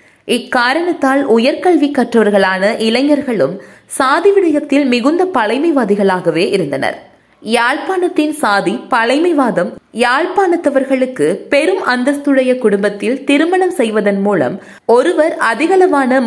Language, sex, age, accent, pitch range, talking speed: Tamil, female, 20-39, native, 215-305 Hz, 75 wpm